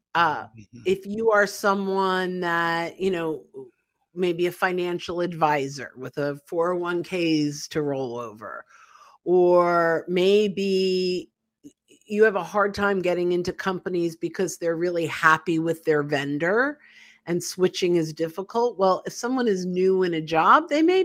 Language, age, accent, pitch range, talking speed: English, 50-69, American, 170-235 Hz, 140 wpm